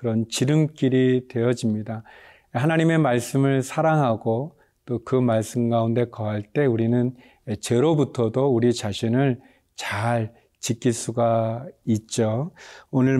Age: 40-59